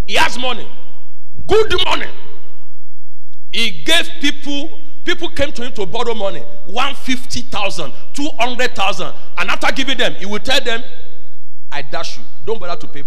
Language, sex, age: English, male, 40-59